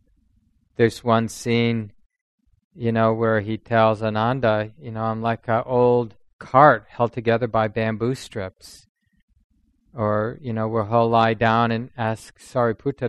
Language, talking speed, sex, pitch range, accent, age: English, 140 wpm, male, 110-125 Hz, American, 40-59